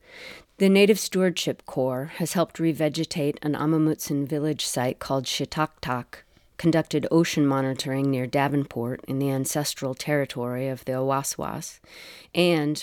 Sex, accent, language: female, American, English